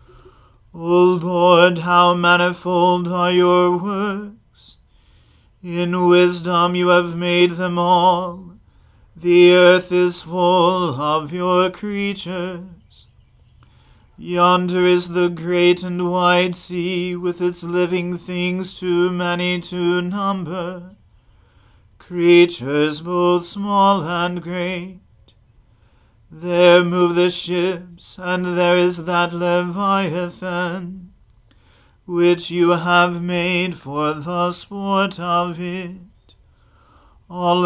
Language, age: English, 40-59